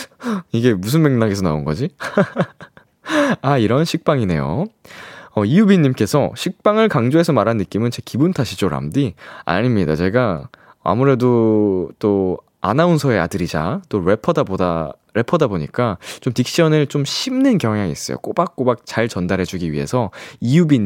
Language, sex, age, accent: Korean, male, 20-39, native